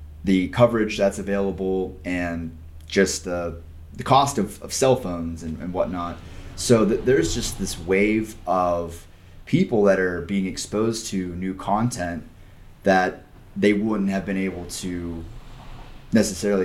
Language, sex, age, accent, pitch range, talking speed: English, male, 30-49, American, 90-110 Hz, 140 wpm